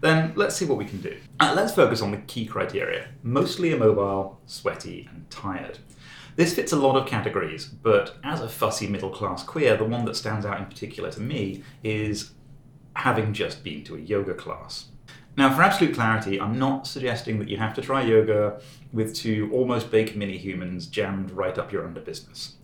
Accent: British